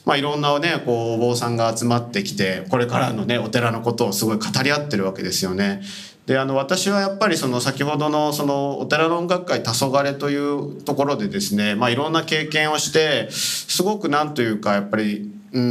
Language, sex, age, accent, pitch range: Japanese, male, 40-59, native, 115-180 Hz